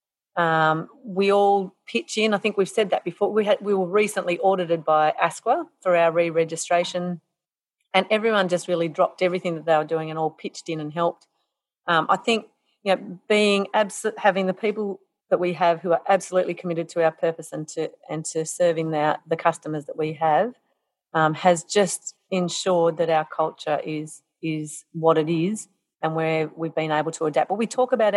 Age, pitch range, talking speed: 40-59, 165-190 Hz, 195 wpm